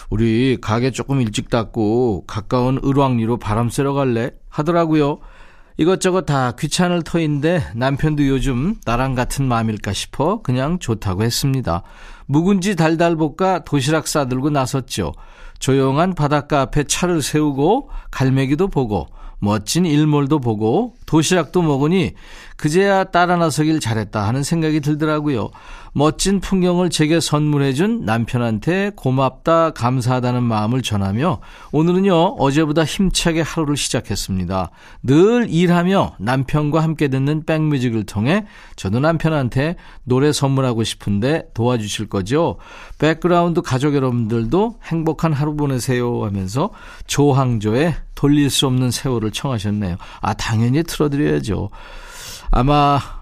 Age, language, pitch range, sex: 40-59, Korean, 120-160 Hz, male